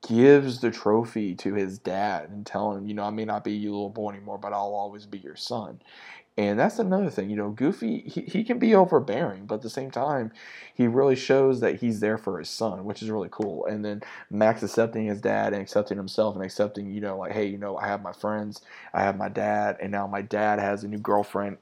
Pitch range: 100-110 Hz